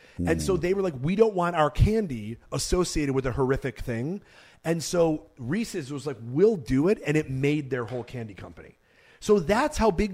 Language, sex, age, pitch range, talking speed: English, male, 30-49, 120-170 Hz, 200 wpm